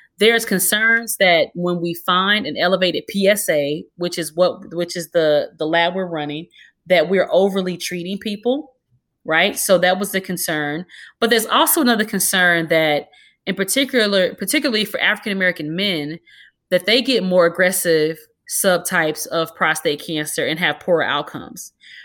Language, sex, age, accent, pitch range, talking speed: English, female, 30-49, American, 165-205 Hz, 150 wpm